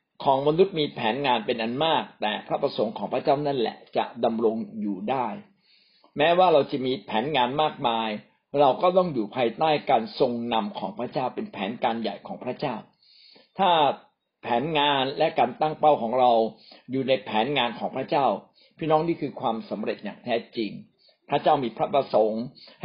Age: 60-79